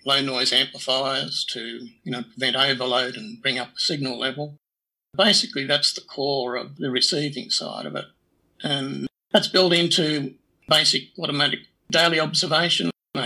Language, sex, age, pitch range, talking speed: English, male, 60-79, 125-155 Hz, 145 wpm